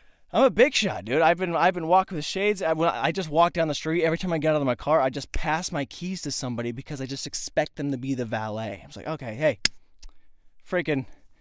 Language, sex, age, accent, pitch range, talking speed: English, male, 20-39, American, 130-165 Hz, 245 wpm